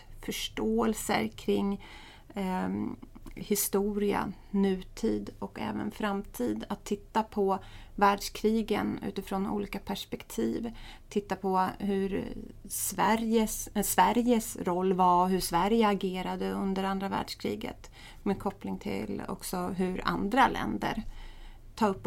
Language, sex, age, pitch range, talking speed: English, female, 30-49, 185-210 Hz, 100 wpm